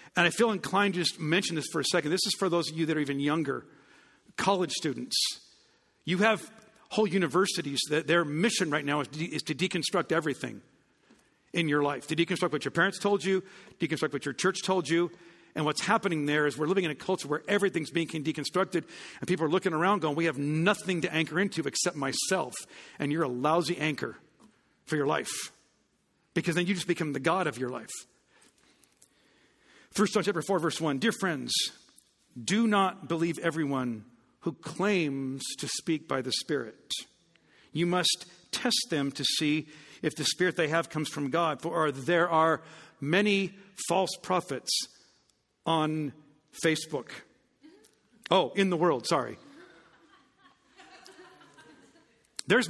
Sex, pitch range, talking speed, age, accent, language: male, 150-190 Hz, 165 wpm, 50-69, American, English